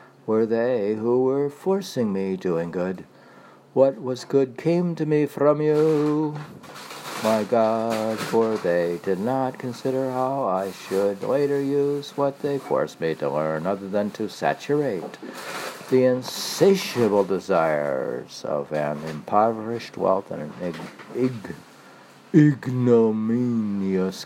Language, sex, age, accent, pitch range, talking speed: English, male, 60-79, American, 105-145 Hz, 120 wpm